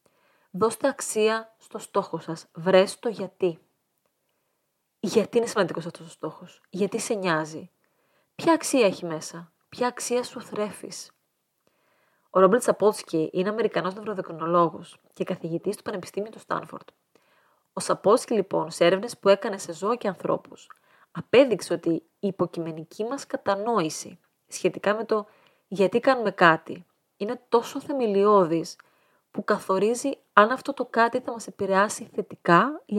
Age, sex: 30-49, female